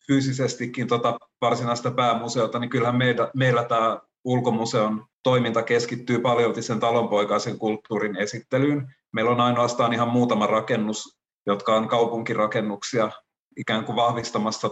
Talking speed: 120 wpm